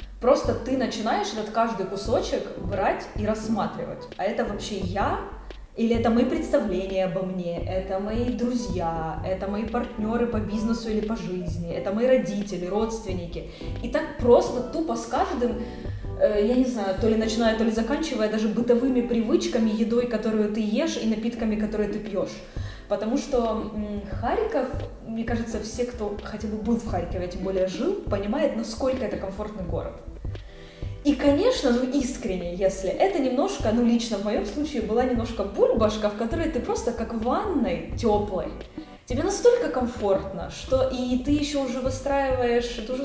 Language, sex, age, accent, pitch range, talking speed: Ukrainian, female, 20-39, native, 200-250 Hz, 160 wpm